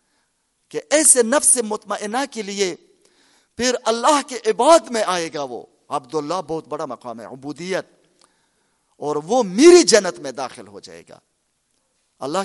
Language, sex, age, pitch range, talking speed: Urdu, male, 40-59, 180-260 Hz, 145 wpm